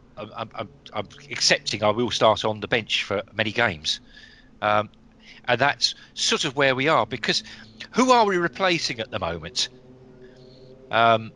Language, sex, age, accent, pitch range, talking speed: English, male, 40-59, British, 115-165 Hz, 160 wpm